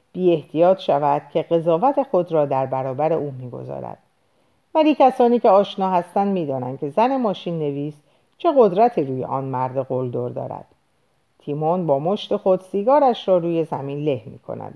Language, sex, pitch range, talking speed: Persian, female, 150-235 Hz, 155 wpm